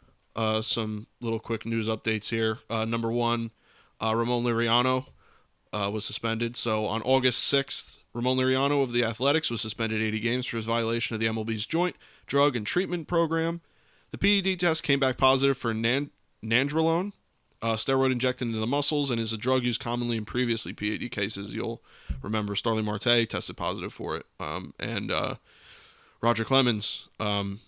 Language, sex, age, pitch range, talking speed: English, male, 20-39, 110-135 Hz, 170 wpm